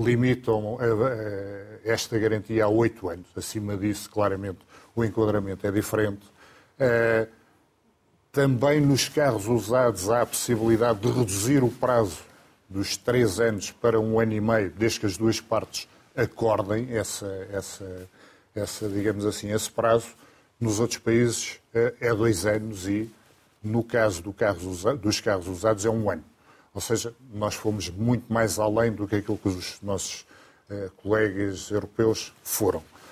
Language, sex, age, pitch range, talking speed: Portuguese, male, 50-69, 105-120 Hz, 130 wpm